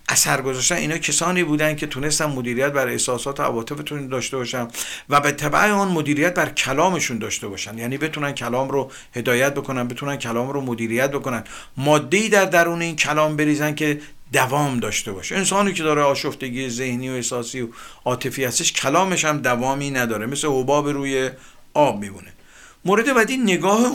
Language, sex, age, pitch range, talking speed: Persian, male, 50-69, 125-165 Hz, 165 wpm